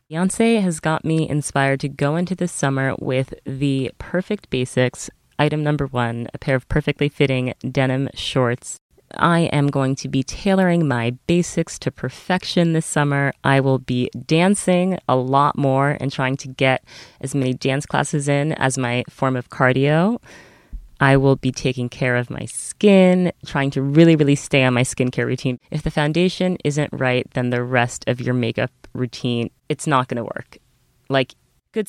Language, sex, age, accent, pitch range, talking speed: English, female, 20-39, American, 130-165 Hz, 175 wpm